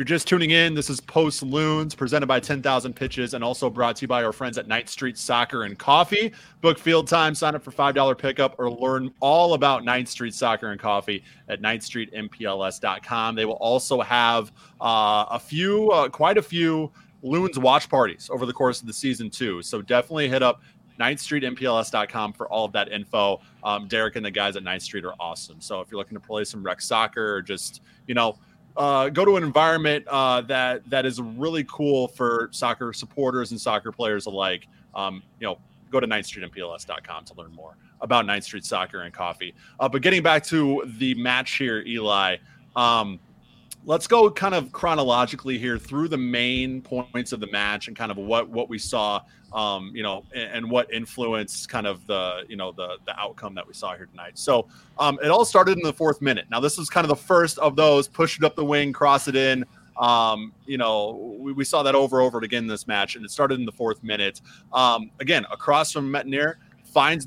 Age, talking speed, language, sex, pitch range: 20-39, 210 wpm, English, male, 115-150 Hz